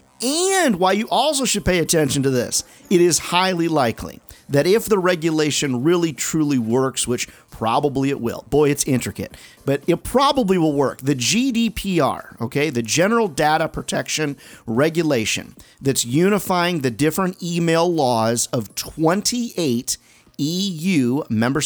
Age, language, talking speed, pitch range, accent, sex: 40-59, English, 140 wpm, 125-175 Hz, American, male